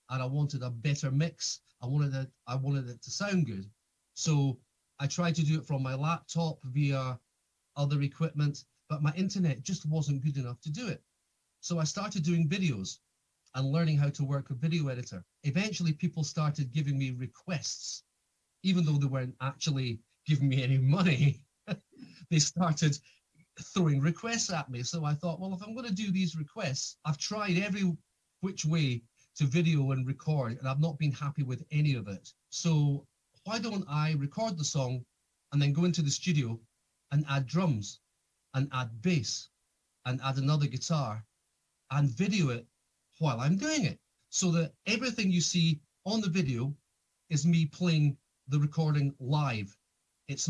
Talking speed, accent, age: 170 wpm, British, 30-49